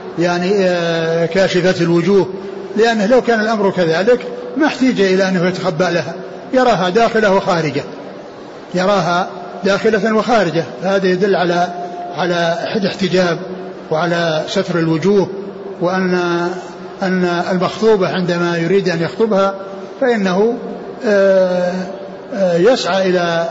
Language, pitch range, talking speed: Arabic, 175-205 Hz, 95 wpm